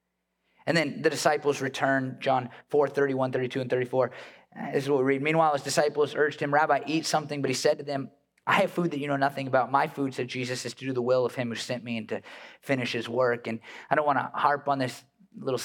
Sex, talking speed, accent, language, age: male, 250 wpm, American, English, 30-49